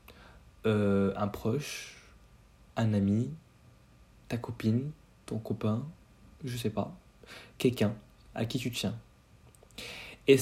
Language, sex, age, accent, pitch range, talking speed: French, male, 20-39, French, 110-150 Hz, 105 wpm